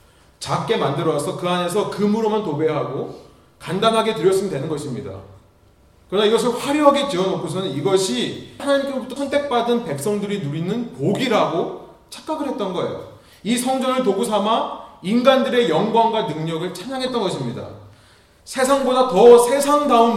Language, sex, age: Korean, male, 30-49